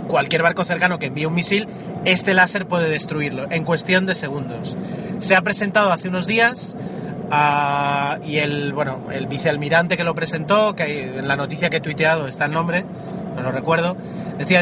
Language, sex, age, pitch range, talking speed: Spanish, male, 30-49, 155-185 Hz, 180 wpm